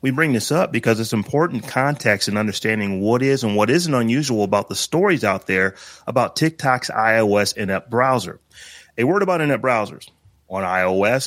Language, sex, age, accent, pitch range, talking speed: English, male, 30-49, American, 105-145 Hz, 175 wpm